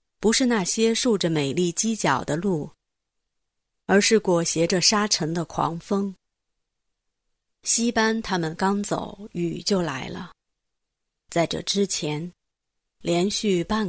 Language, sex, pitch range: Chinese, female, 160-205 Hz